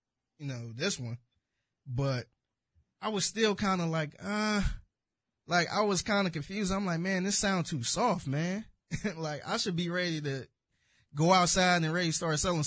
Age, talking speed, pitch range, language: 20-39, 185 wpm, 125-180 Hz, English